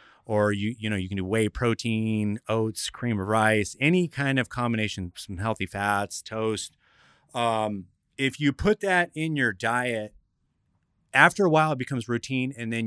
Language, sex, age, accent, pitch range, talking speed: English, male, 30-49, American, 100-125 Hz, 175 wpm